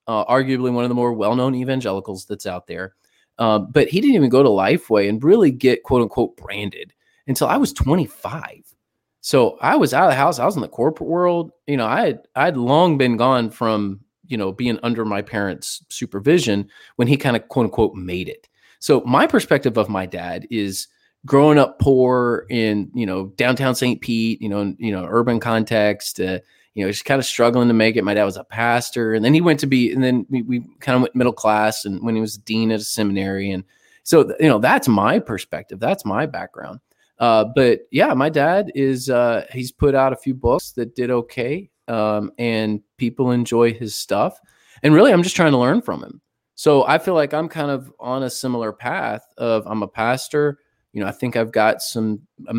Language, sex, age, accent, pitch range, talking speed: English, male, 20-39, American, 105-130 Hz, 220 wpm